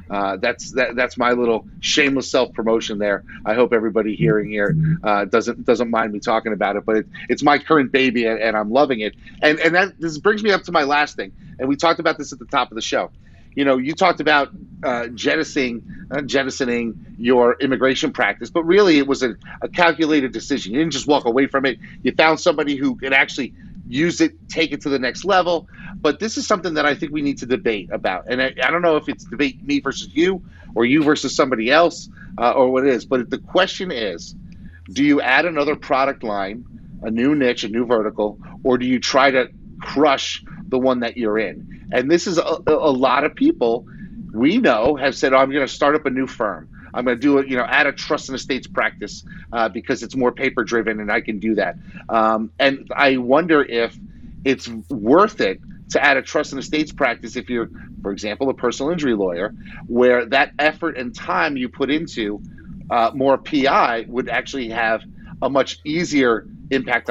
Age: 30-49